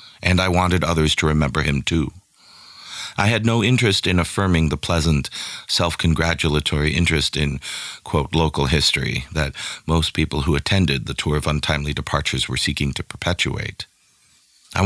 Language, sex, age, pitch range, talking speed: English, male, 40-59, 75-90 Hz, 150 wpm